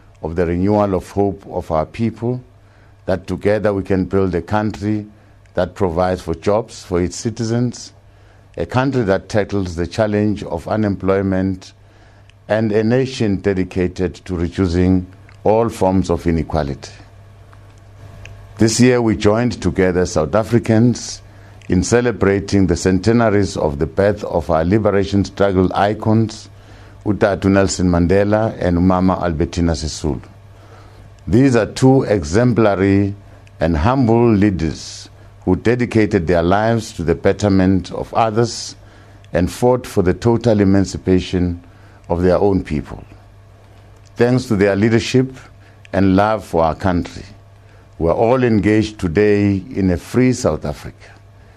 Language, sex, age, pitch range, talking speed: English, male, 50-69, 95-110 Hz, 130 wpm